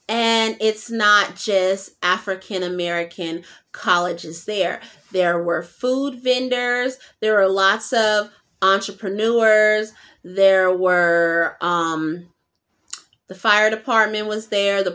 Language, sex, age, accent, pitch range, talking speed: English, female, 30-49, American, 180-230 Hz, 100 wpm